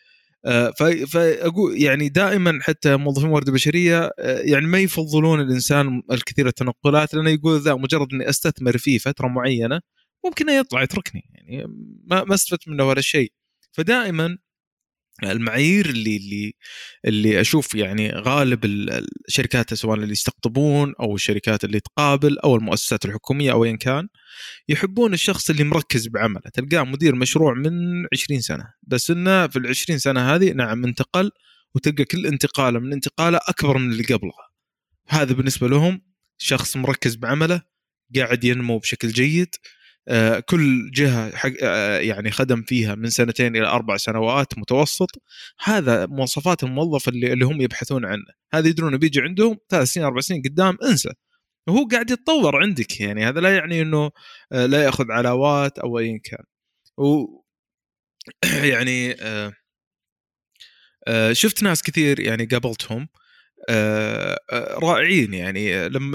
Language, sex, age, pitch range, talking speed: Arabic, male, 20-39, 120-160 Hz, 130 wpm